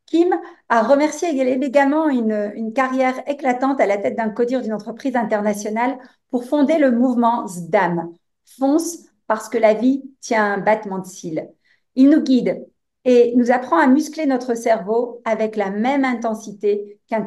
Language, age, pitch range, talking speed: French, 50-69, 225-270 Hz, 160 wpm